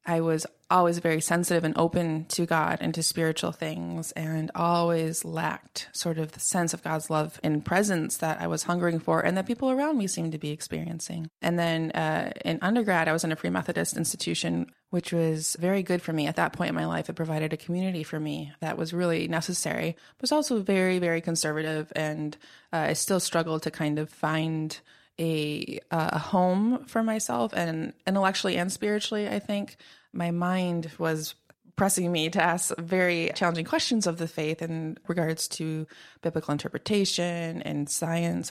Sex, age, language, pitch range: female, 20-39, English, 160-180 Hz